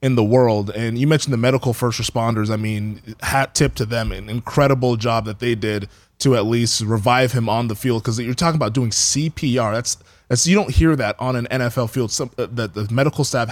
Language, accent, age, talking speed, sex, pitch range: English, American, 20-39, 220 wpm, male, 110-130 Hz